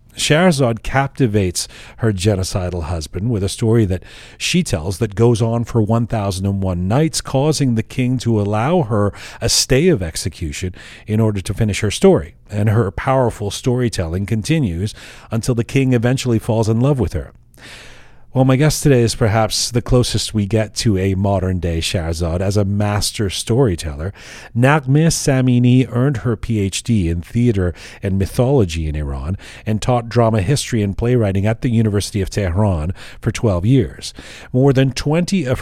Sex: male